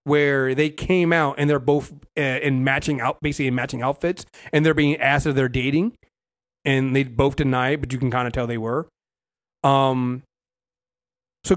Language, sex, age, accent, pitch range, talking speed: English, male, 30-49, American, 130-170 Hz, 185 wpm